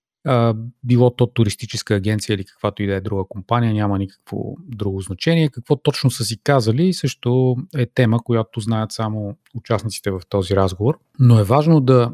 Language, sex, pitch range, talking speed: Bulgarian, male, 110-135 Hz, 170 wpm